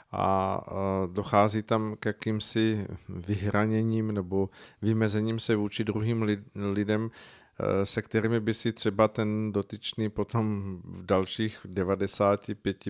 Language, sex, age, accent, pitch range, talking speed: Czech, male, 50-69, native, 100-110 Hz, 105 wpm